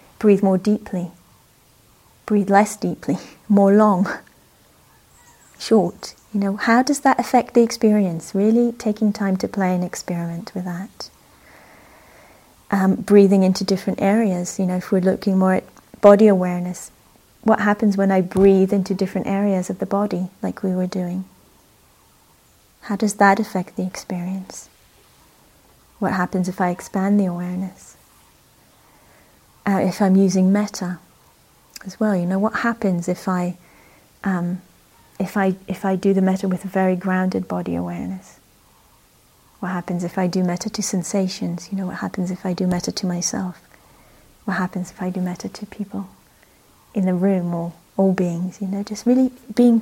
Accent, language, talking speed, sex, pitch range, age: British, English, 155 wpm, female, 180-205 Hz, 30-49